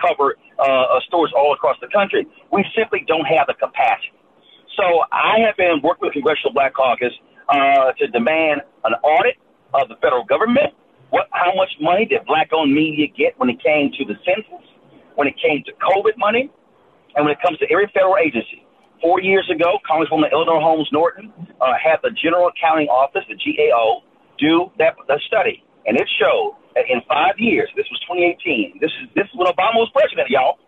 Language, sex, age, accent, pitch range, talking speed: English, male, 40-59, American, 165-270 Hz, 195 wpm